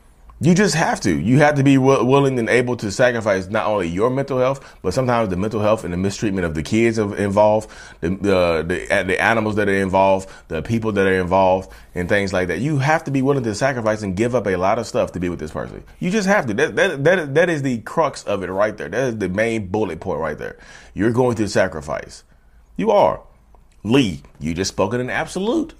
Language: English